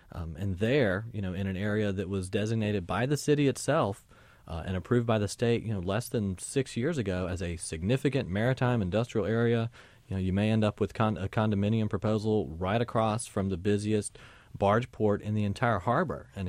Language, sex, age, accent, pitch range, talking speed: English, male, 40-59, American, 95-110 Hz, 205 wpm